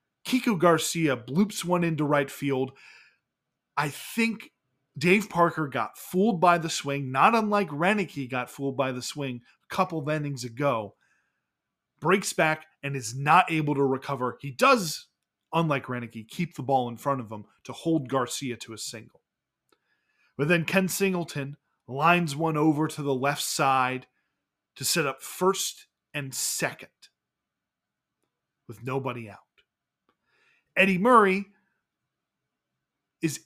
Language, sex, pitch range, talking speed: English, male, 135-180 Hz, 140 wpm